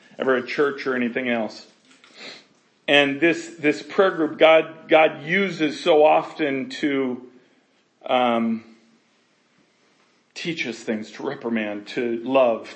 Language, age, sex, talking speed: English, 40-59, male, 120 wpm